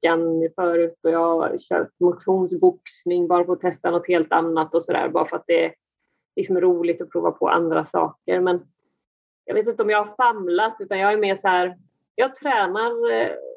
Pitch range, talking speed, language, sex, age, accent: 175-235 Hz, 195 wpm, Swedish, female, 30-49, native